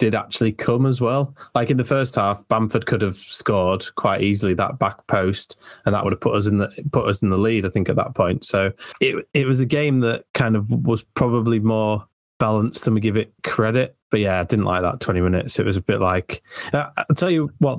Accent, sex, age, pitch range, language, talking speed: British, male, 20-39, 100-120 Hz, English, 245 wpm